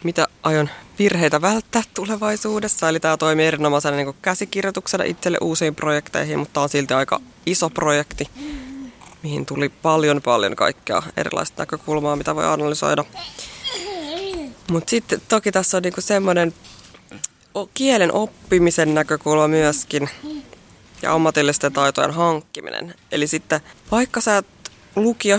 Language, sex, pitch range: Finnish, female, 155-200 Hz